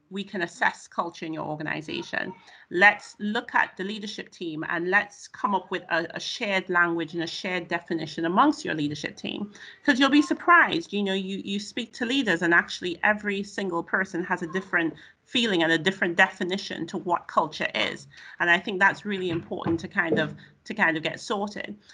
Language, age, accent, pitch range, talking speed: English, 40-59, British, 170-215 Hz, 195 wpm